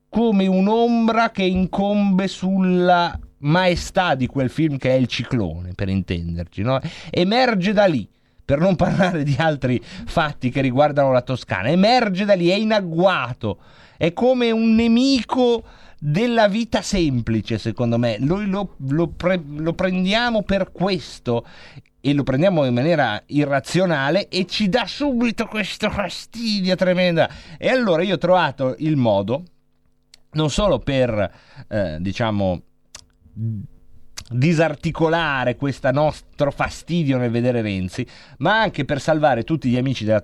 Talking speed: 135 wpm